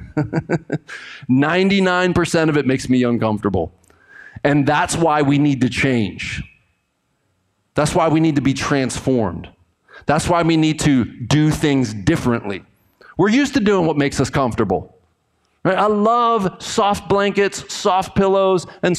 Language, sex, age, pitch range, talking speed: English, male, 40-59, 120-160 Hz, 135 wpm